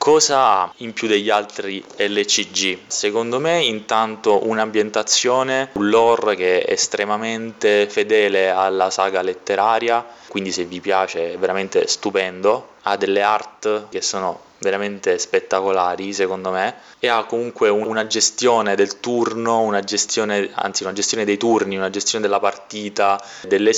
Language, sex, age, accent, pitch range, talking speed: Italian, male, 20-39, native, 100-115 Hz, 140 wpm